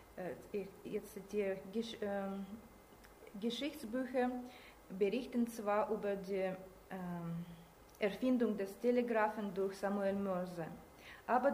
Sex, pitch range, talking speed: female, 185-230 Hz, 90 wpm